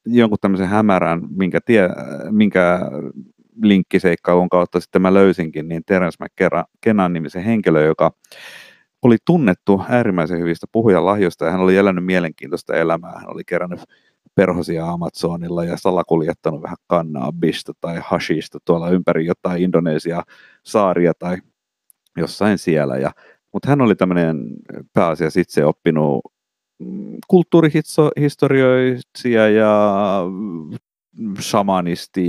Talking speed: 110 wpm